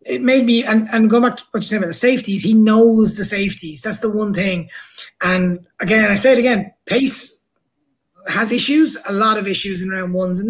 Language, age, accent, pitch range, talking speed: English, 20-39, Irish, 195-225 Hz, 225 wpm